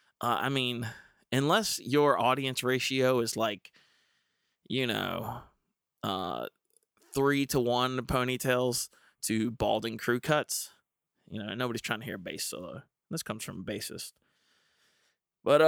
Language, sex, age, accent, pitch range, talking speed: English, male, 20-39, American, 115-135 Hz, 135 wpm